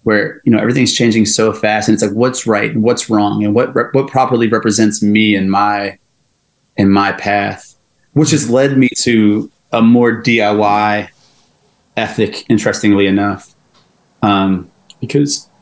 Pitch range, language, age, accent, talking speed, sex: 105-125 Hz, English, 30-49, American, 150 wpm, male